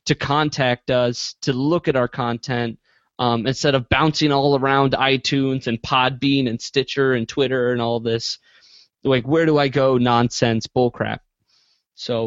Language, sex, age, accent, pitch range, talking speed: English, male, 20-39, American, 120-145 Hz, 155 wpm